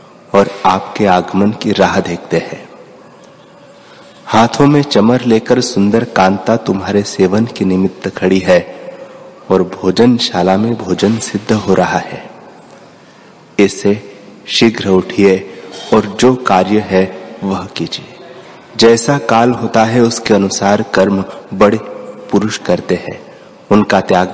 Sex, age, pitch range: male, 30-49, 95-120 Hz